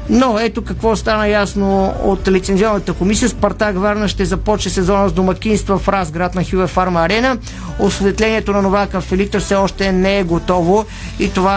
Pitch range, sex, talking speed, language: 180-210 Hz, male, 170 wpm, Bulgarian